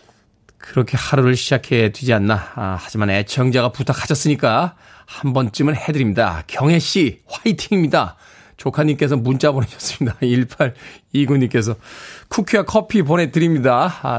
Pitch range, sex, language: 115-155 Hz, male, Korean